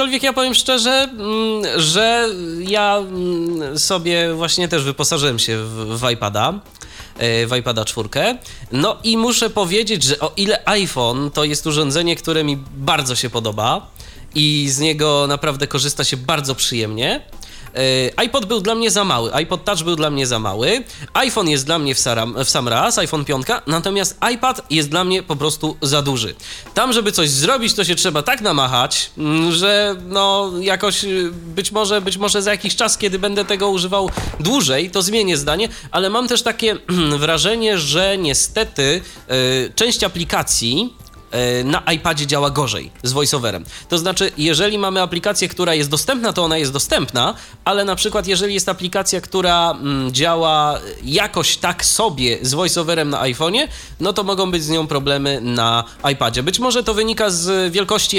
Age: 20-39